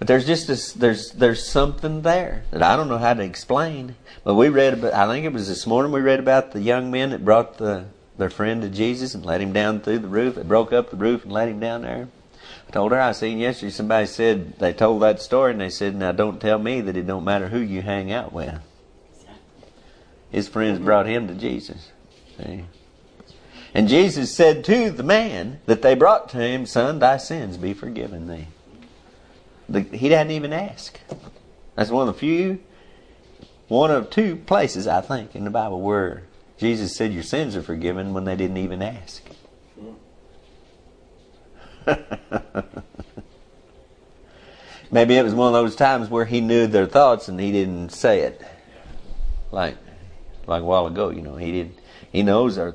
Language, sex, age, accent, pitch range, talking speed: English, male, 50-69, American, 95-125 Hz, 190 wpm